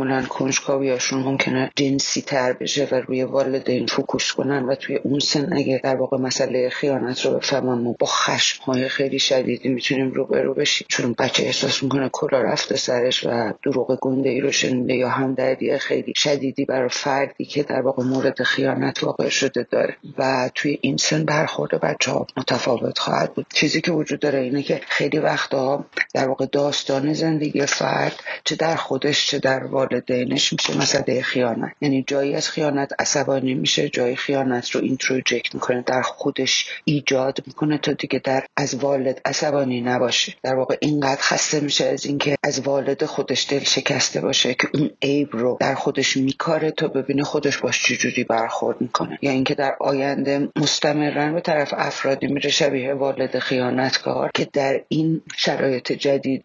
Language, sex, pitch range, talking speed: Persian, female, 130-145 Hz, 170 wpm